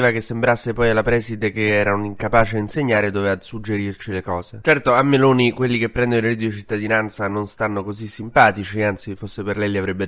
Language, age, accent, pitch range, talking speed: Italian, 20-39, native, 105-140 Hz, 210 wpm